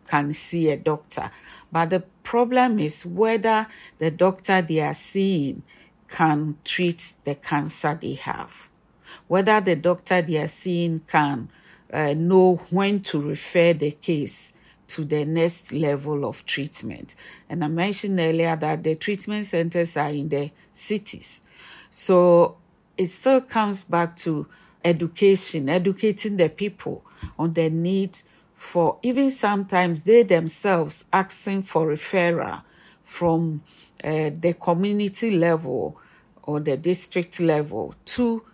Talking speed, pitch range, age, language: 130 wpm, 155-190 Hz, 50-69, English